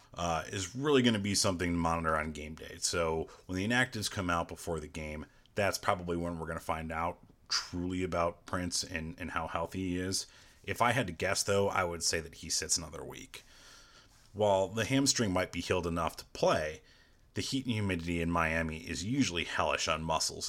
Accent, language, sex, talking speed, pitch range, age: American, English, male, 210 wpm, 80-100 Hz, 30-49